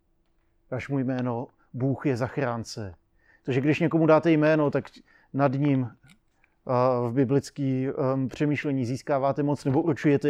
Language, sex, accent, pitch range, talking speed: Czech, male, native, 125-145 Hz, 120 wpm